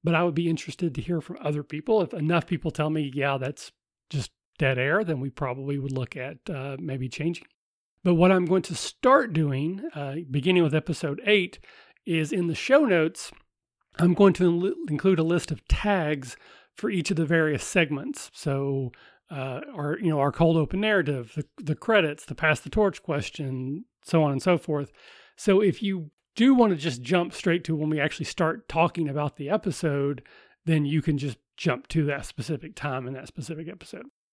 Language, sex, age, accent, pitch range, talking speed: English, male, 40-59, American, 145-185 Hz, 200 wpm